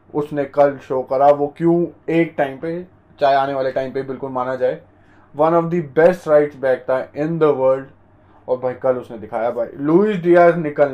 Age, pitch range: 20-39, 125-165 Hz